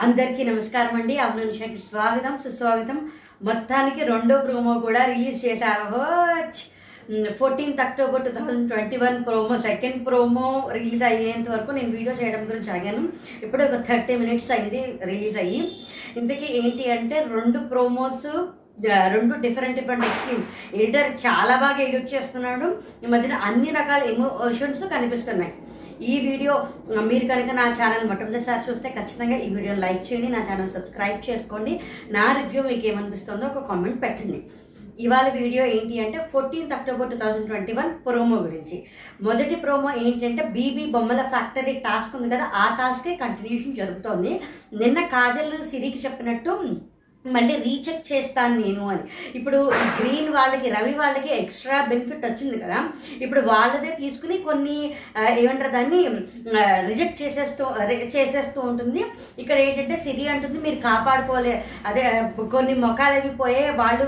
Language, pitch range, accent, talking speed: Telugu, 230-270 Hz, native, 135 wpm